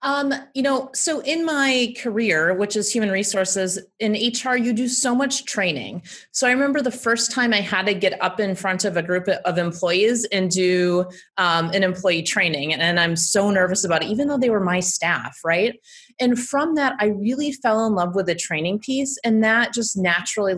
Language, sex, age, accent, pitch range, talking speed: English, female, 30-49, American, 185-235 Hz, 205 wpm